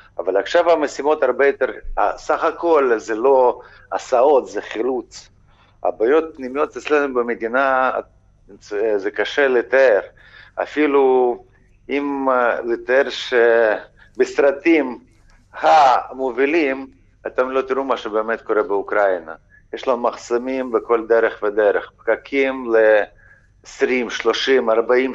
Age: 50-69